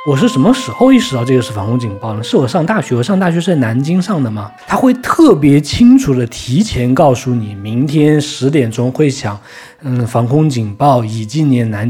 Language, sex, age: Chinese, male, 20-39